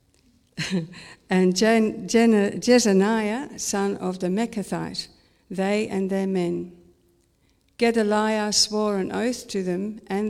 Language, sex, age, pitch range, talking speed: English, female, 60-79, 185-215 Hz, 100 wpm